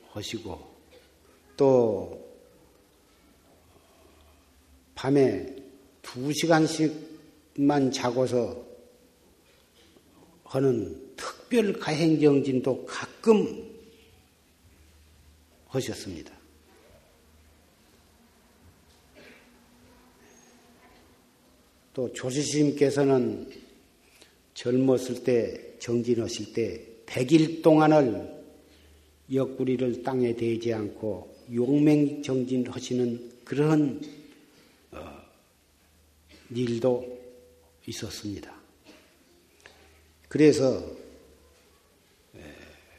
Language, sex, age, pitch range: Korean, male, 50-69, 80-135 Hz